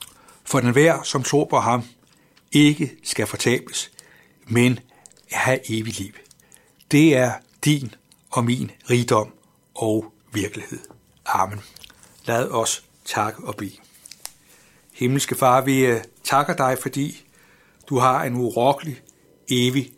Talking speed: 115 wpm